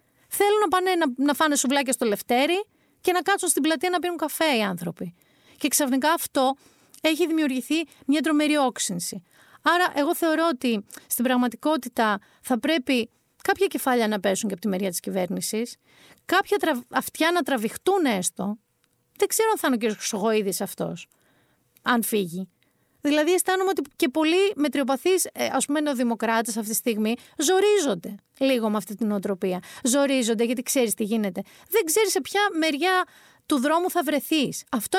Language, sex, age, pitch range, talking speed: Greek, female, 40-59, 225-340 Hz, 160 wpm